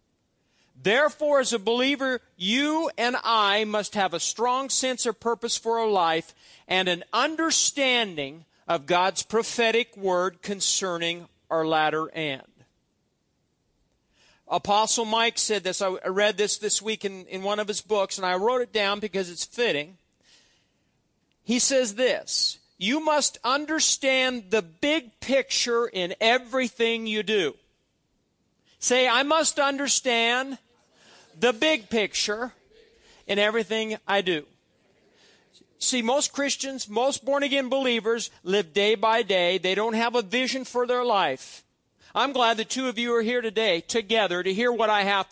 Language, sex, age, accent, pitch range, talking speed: English, male, 50-69, American, 200-255 Hz, 145 wpm